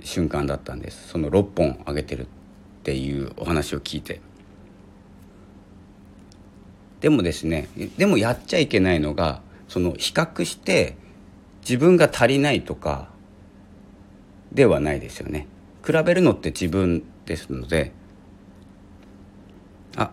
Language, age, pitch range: Japanese, 50-69, 90-100 Hz